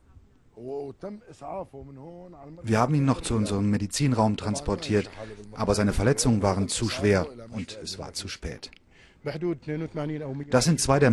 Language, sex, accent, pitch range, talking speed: German, male, German, 105-130 Hz, 125 wpm